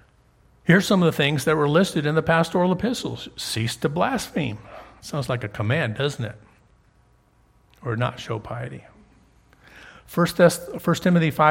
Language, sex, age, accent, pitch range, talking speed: English, male, 50-69, American, 125-175 Hz, 140 wpm